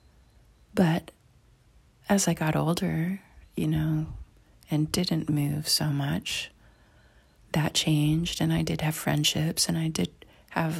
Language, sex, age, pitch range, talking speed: English, female, 30-49, 150-170 Hz, 130 wpm